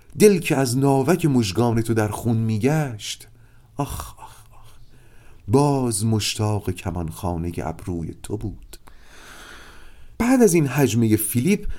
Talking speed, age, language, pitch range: 115 wpm, 40-59, Persian, 90-135 Hz